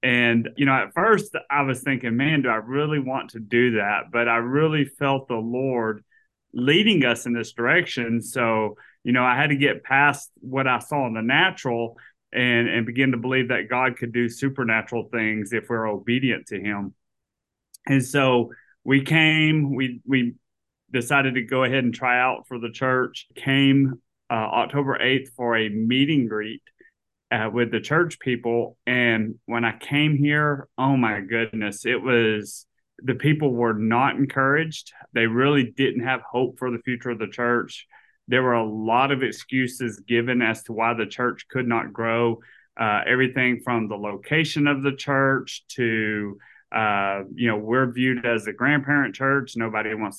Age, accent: 30-49, American